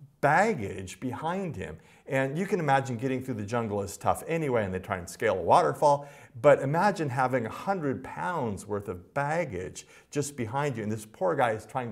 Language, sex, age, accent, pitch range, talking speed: English, male, 50-69, American, 105-140 Hz, 195 wpm